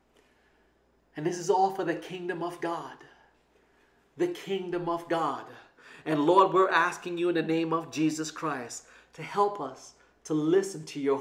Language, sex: English, male